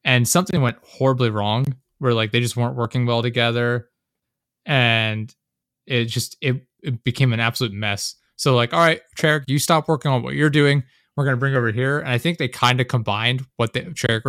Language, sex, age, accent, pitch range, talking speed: English, male, 20-39, American, 115-135 Hz, 205 wpm